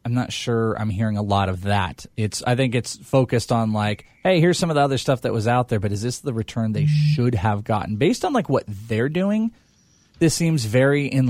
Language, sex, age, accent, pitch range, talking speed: English, male, 20-39, American, 110-135 Hz, 245 wpm